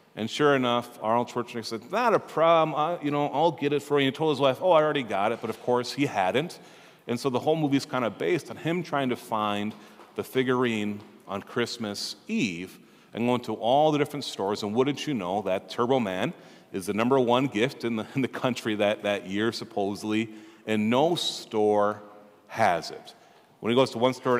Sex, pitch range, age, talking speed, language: male, 110-145 Hz, 40-59, 215 wpm, English